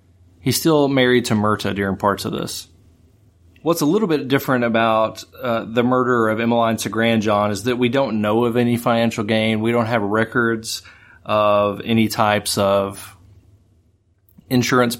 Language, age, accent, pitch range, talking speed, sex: English, 30-49, American, 100-115 Hz, 165 wpm, male